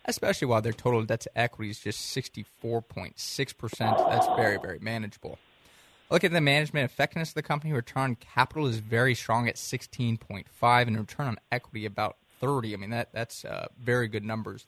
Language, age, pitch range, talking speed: English, 20-39, 110-135 Hz, 180 wpm